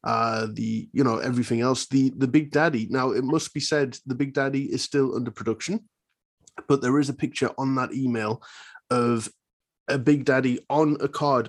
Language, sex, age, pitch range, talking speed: English, male, 20-39, 120-140 Hz, 195 wpm